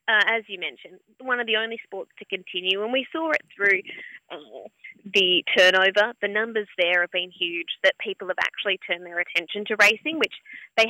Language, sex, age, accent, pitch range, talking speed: English, female, 20-39, Australian, 190-250 Hz, 200 wpm